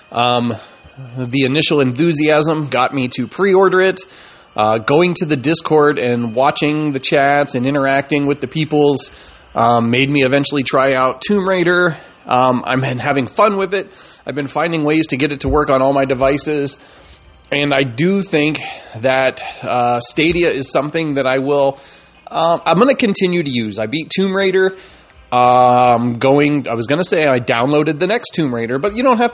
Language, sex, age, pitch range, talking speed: English, male, 30-49, 130-160 Hz, 185 wpm